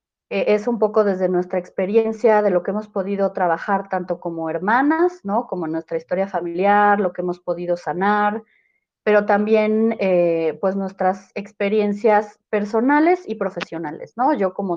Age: 30-49